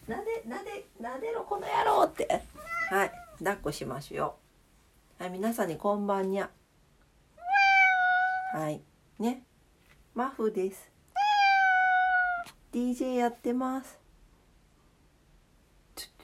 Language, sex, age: Japanese, female, 40-59